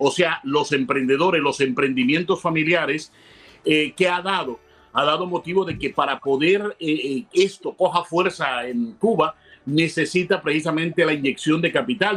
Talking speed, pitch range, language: 150 wpm, 155-190 Hz, Spanish